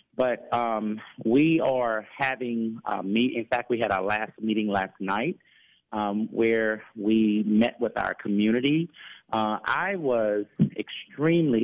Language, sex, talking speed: English, male, 140 wpm